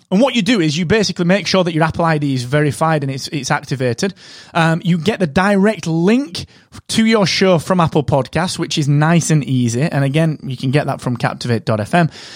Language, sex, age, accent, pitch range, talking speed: English, male, 30-49, British, 140-190 Hz, 215 wpm